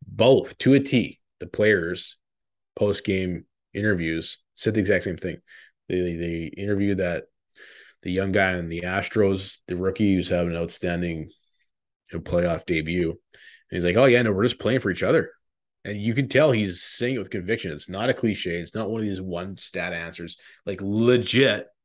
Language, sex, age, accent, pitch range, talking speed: English, male, 20-39, American, 85-110 Hz, 185 wpm